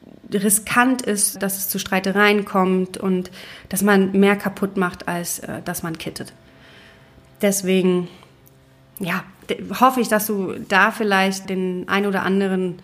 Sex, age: female, 30-49